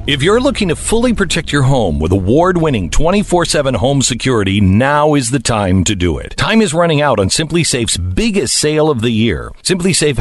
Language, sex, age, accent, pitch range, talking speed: English, male, 50-69, American, 110-165 Hz, 195 wpm